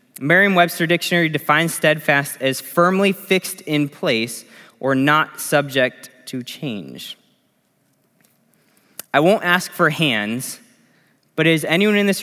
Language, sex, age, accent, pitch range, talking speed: English, male, 20-39, American, 130-170 Hz, 120 wpm